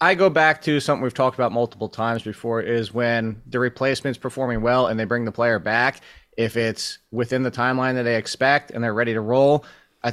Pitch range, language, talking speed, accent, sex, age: 115-150 Hz, English, 220 wpm, American, male, 20-39